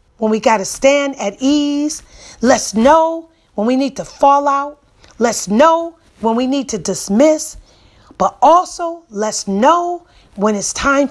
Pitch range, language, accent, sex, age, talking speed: 220-310 Hz, English, American, female, 40-59, 150 wpm